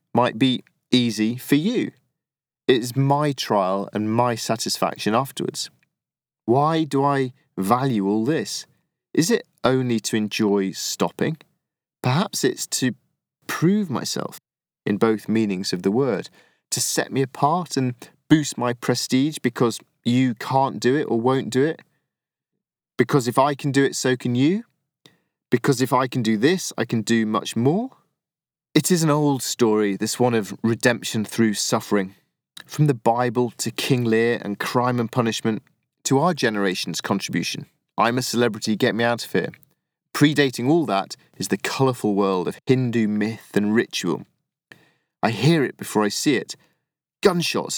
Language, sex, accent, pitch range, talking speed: English, male, British, 110-140 Hz, 155 wpm